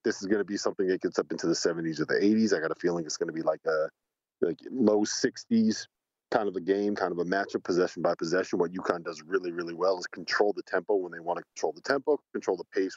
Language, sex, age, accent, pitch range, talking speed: English, male, 40-59, American, 90-145 Hz, 275 wpm